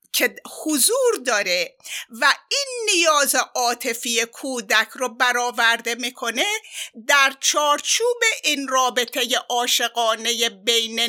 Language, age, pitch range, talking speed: Persian, 50-69, 235-355 Hz, 90 wpm